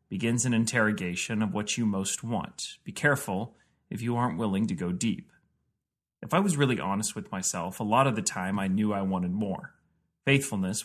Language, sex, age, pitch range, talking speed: English, male, 30-49, 100-120 Hz, 195 wpm